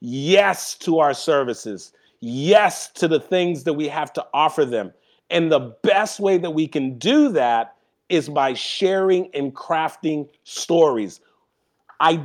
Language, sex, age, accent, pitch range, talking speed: English, male, 40-59, American, 155-195 Hz, 145 wpm